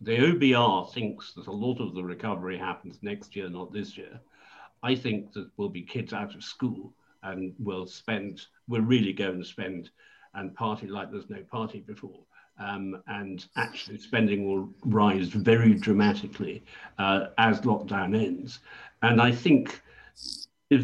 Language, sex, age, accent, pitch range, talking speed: English, male, 60-79, British, 105-135 Hz, 160 wpm